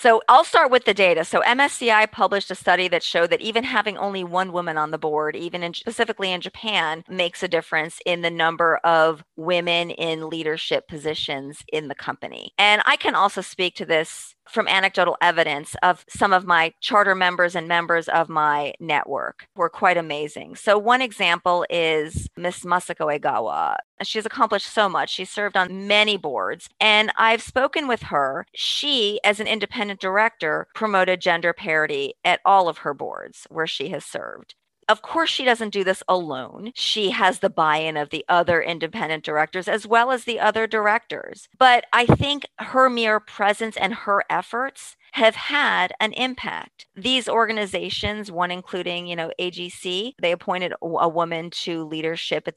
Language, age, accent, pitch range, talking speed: English, 40-59, American, 170-220 Hz, 170 wpm